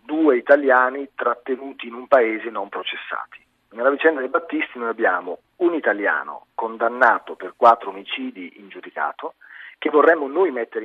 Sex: male